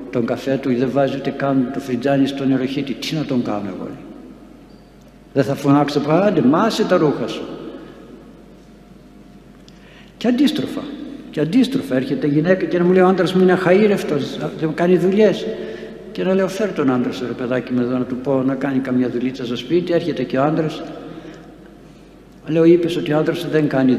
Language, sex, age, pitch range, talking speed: Greek, male, 60-79, 135-195 Hz, 190 wpm